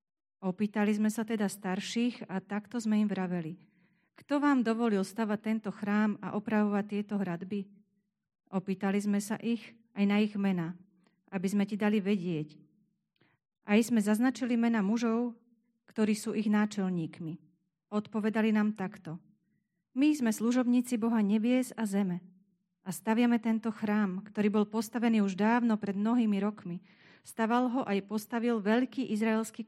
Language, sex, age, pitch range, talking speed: Slovak, female, 40-59, 195-225 Hz, 140 wpm